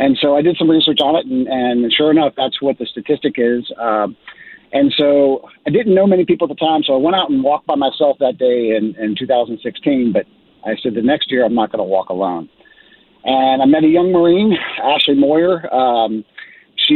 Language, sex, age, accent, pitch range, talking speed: English, male, 50-69, American, 120-165 Hz, 225 wpm